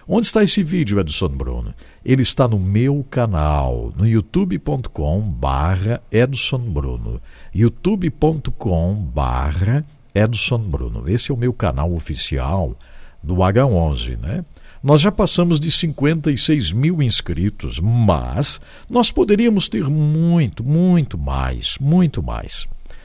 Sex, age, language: male, 60-79, English